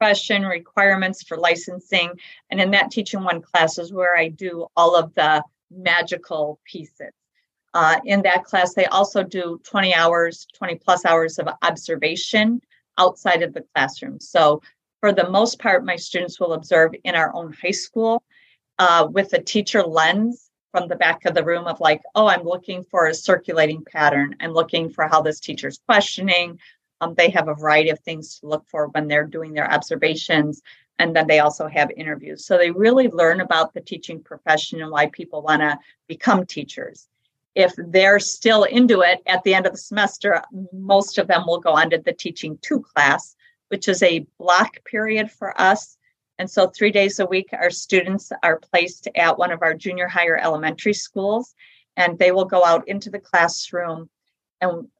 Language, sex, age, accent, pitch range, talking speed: English, female, 40-59, American, 160-195 Hz, 185 wpm